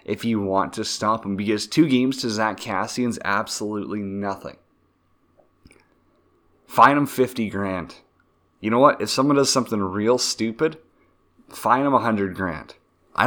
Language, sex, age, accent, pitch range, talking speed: English, male, 30-49, American, 100-120 Hz, 155 wpm